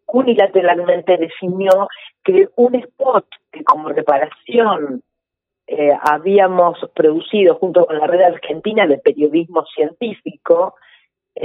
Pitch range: 150-215 Hz